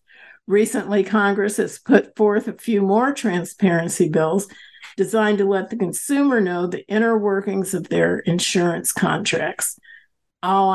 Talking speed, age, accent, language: 135 wpm, 50-69, American, English